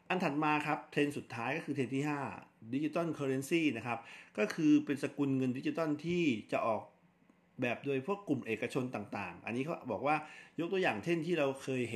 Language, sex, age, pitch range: Thai, male, 60-79, 115-145 Hz